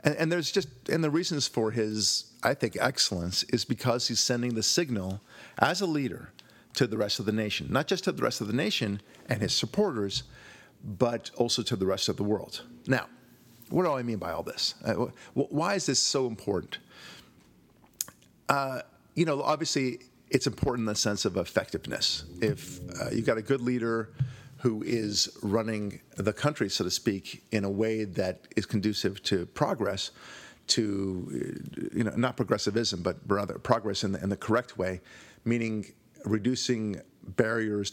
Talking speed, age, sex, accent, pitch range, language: 170 wpm, 50-69, male, American, 100-125 Hz, English